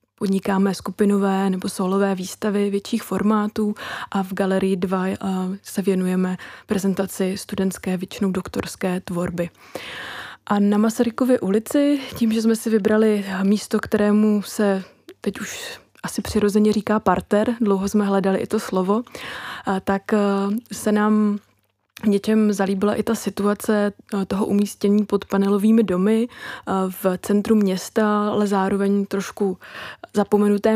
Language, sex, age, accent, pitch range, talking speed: Czech, female, 20-39, native, 190-210 Hz, 120 wpm